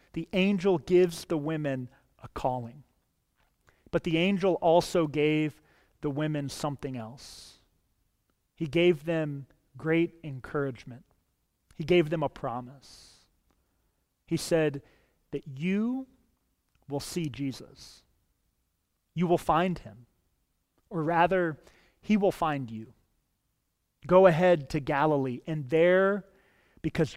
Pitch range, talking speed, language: 140-185 Hz, 110 wpm, English